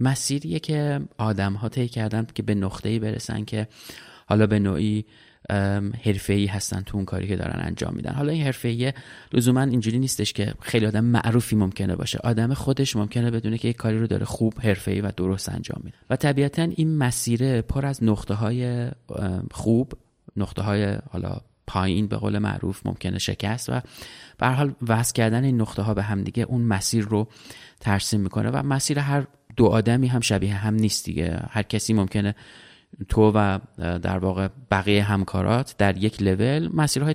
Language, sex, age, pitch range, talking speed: Persian, male, 30-49, 100-125 Hz, 175 wpm